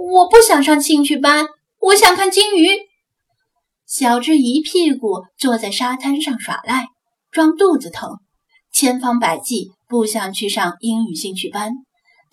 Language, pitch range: Chinese, 215-285 Hz